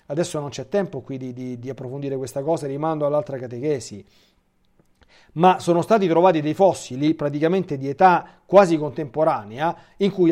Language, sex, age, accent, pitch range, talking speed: Italian, male, 40-59, native, 135-200 Hz, 155 wpm